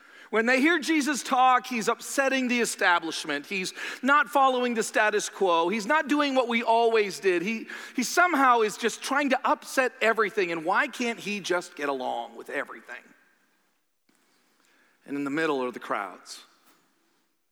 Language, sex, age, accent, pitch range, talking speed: English, male, 40-59, American, 160-225 Hz, 160 wpm